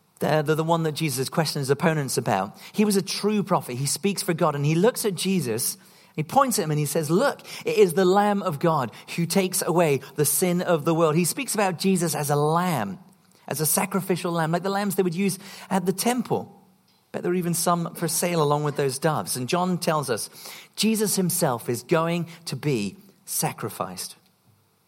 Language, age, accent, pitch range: English, 40-59, British, 150-190 Hz